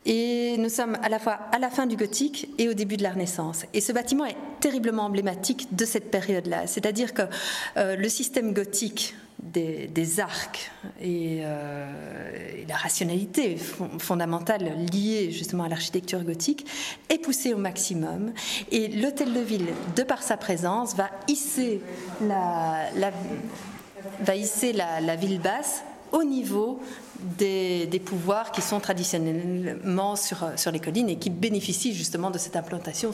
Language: French